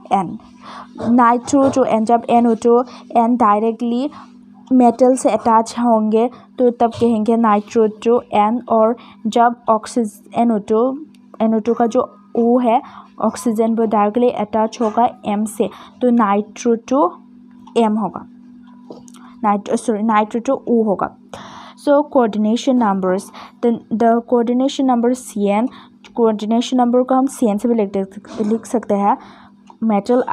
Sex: female